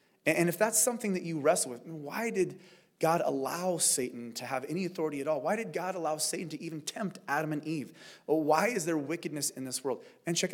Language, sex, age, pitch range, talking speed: English, male, 30-49, 125-175 Hz, 220 wpm